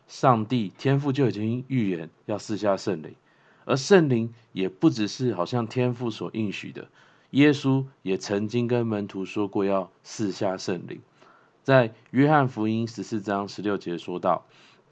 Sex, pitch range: male, 100-125 Hz